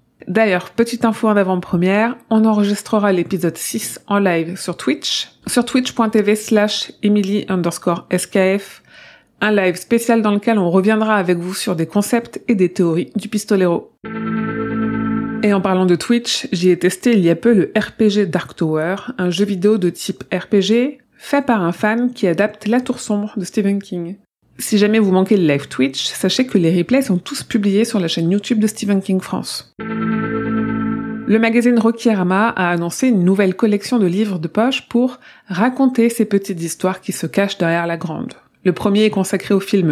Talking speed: 185 wpm